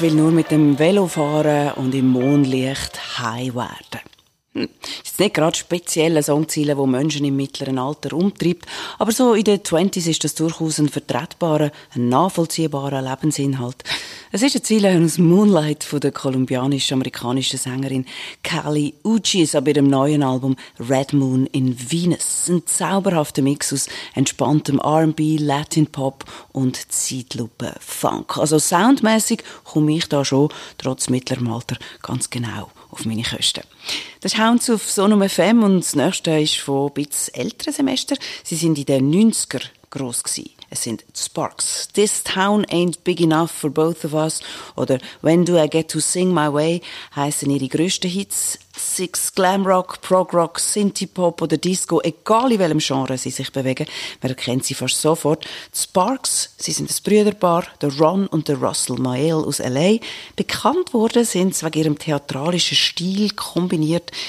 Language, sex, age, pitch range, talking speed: German, female, 30-49, 135-175 Hz, 150 wpm